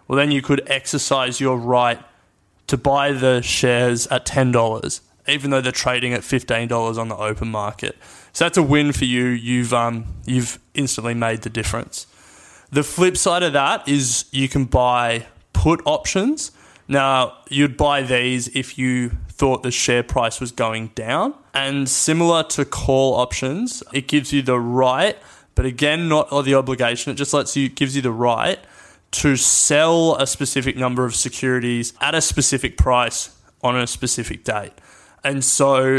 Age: 20-39